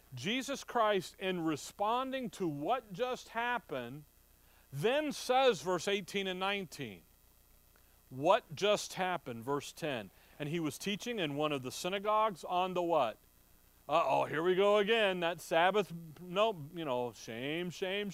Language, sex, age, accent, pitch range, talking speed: English, male, 40-59, American, 145-205 Hz, 140 wpm